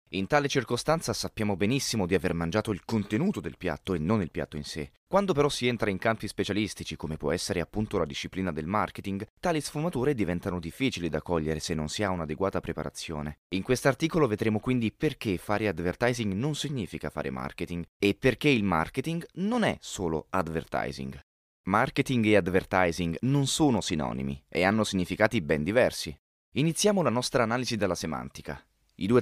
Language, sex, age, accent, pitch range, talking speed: Italian, male, 20-39, native, 80-120 Hz, 175 wpm